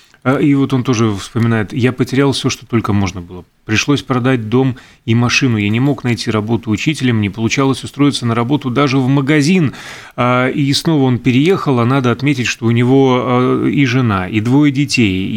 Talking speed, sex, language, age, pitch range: 180 wpm, male, Russian, 30-49, 120-150 Hz